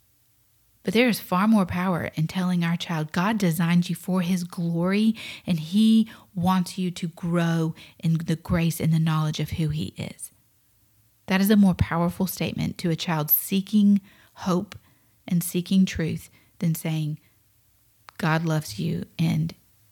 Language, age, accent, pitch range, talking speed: English, 40-59, American, 150-190 Hz, 155 wpm